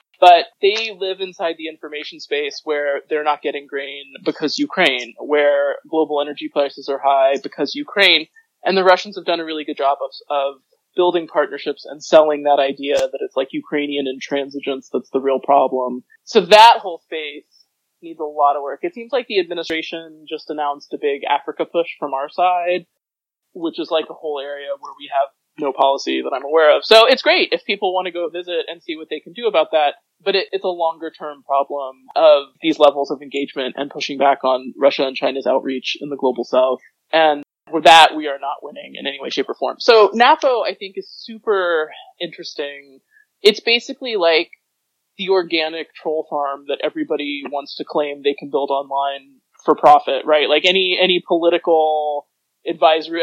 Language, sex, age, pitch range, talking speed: English, male, 20-39, 145-190 Hz, 190 wpm